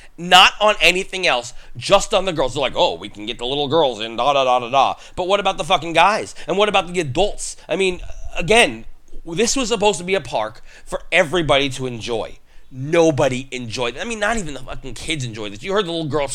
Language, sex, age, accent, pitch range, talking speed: English, male, 30-49, American, 125-195 Hz, 240 wpm